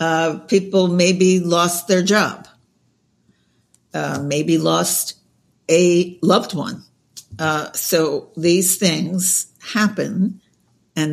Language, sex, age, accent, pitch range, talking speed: English, female, 60-79, American, 155-195 Hz, 95 wpm